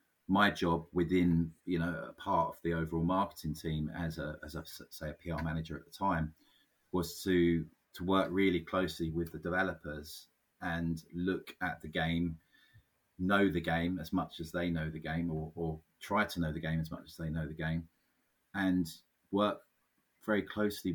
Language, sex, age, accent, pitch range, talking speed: English, male, 30-49, British, 80-95 Hz, 185 wpm